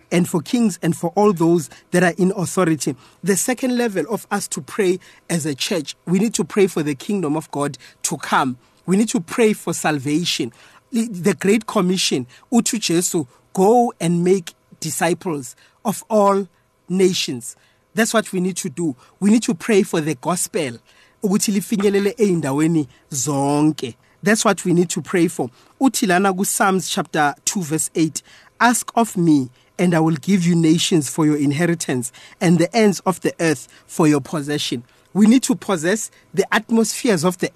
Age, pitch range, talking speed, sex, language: 30-49, 155-205 Hz, 165 wpm, male, English